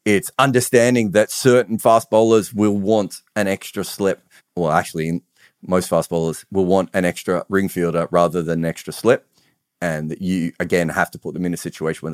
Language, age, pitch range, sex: English, 40-59, 90-115 Hz, male